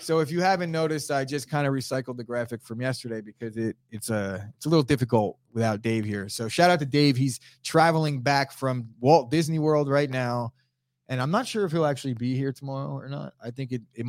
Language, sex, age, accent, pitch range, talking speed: English, male, 20-39, American, 120-145 Hz, 235 wpm